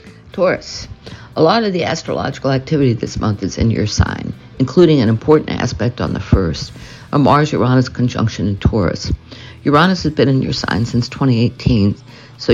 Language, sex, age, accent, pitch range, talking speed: English, female, 60-79, American, 110-135 Hz, 165 wpm